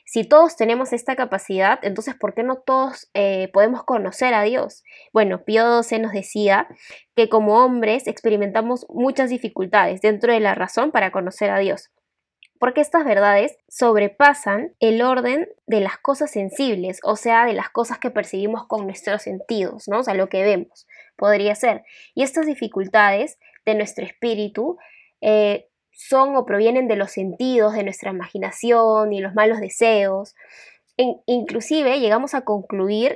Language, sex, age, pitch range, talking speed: Spanish, female, 10-29, 205-255 Hz, 155 wpm